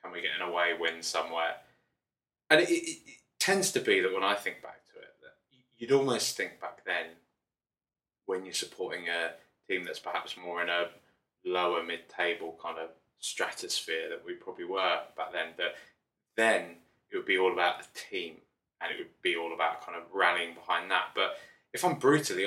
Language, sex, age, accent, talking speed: English, male, 20-39, British, 190 wpm